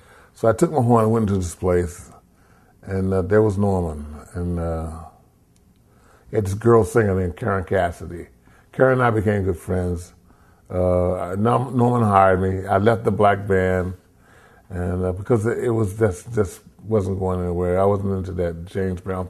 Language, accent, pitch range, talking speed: English, American, 90-110 Hz, 175 wpm